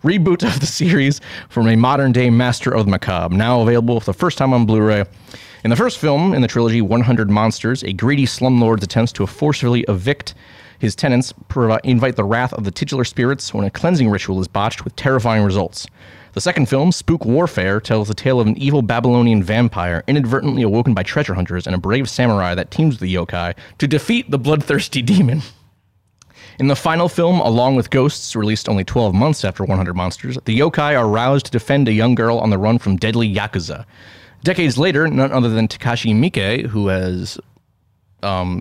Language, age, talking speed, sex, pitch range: English, 30-49, 195 wpm, male, 100-130 Hz